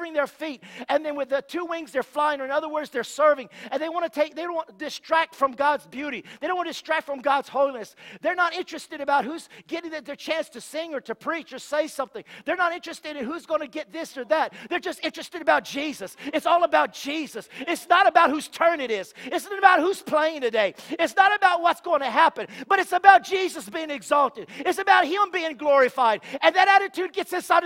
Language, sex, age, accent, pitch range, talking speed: English, male, 40-59, American, 260-335 Hz, 235 wpm